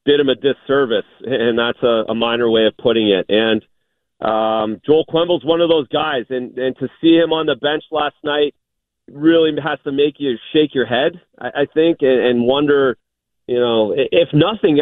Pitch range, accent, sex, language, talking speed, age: 125-170 Hz, American, male, English, 200 wpm, 40-59